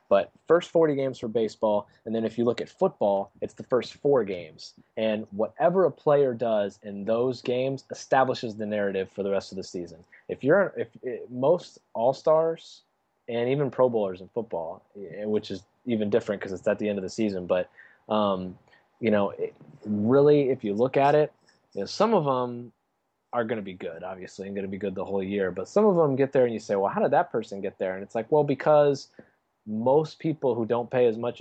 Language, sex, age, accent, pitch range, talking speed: English, male, 20-39, American, 105-135 Hz, 225 wpm